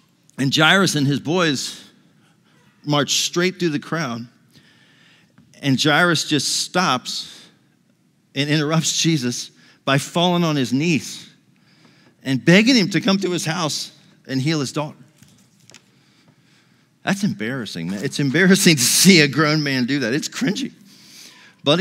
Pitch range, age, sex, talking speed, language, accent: 135-180 Hz, 50-69, male, 135 wpm, English, American